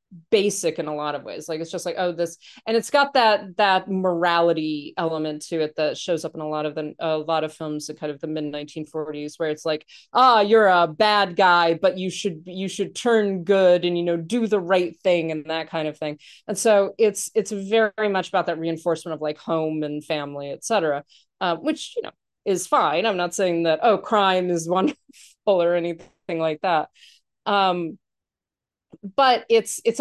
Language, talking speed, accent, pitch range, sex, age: English, 210 wpm, American, 160-215 Hz, female, 30-49